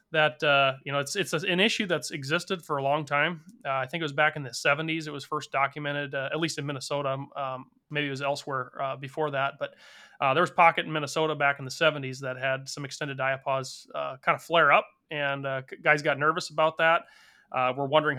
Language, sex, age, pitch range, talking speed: English, male, 30-49, 140-160 Hz, 235 wpm